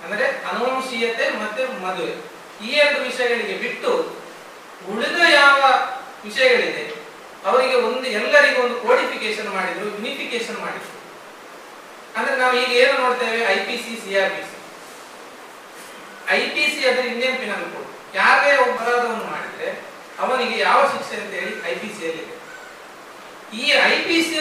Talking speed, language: 100 wpm, Kannada